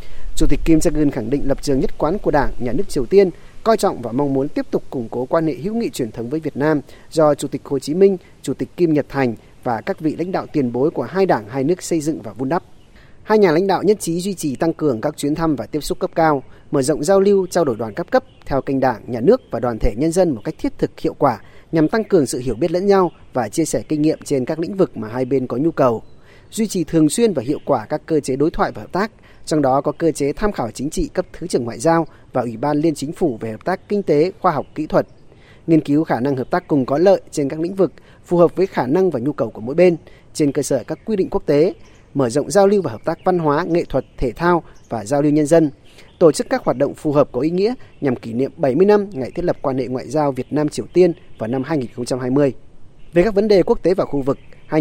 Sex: male